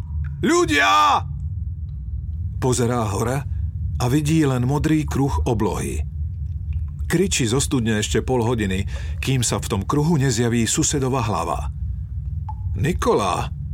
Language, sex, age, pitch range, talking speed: Slovak, male, 50-69, 80-125 Hz, 105 wpm